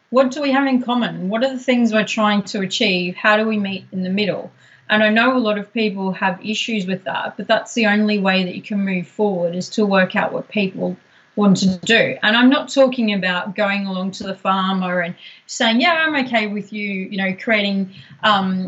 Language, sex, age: English, female, 30-49